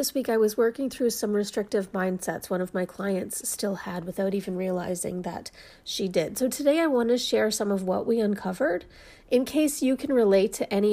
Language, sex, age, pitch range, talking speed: English, female, 40-59, 200-260 Hz, 215 wpm